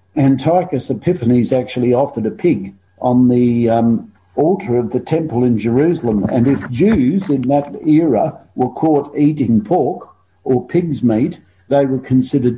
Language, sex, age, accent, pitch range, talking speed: English, male, 50-69, Australian, 115-145 Hz, 150 wpm